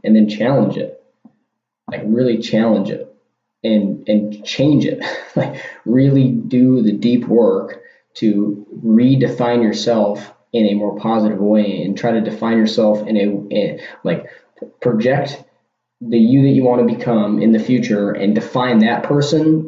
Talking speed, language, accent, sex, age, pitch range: 150 wpm, English, American, male, 20-39, 105-120 Hz